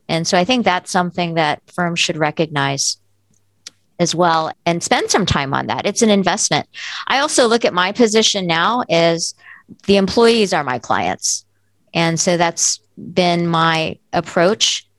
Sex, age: female, 40-59